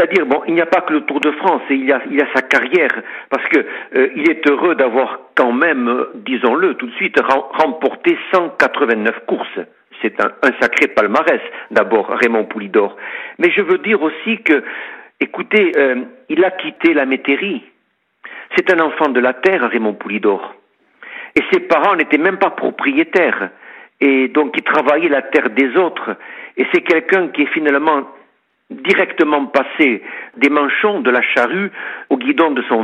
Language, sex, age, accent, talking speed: French, male, 60-79, French, 170 wpm